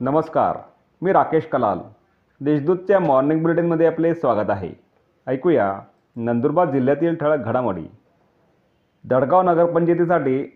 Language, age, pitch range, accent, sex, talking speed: Marathi, 40-59, 135-170 Hz, native, male, 100 wpm